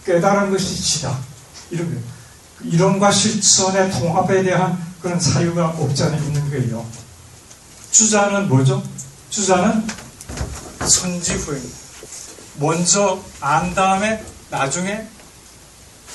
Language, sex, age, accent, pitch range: Korean, male, 40-59, native, 135-185 Hz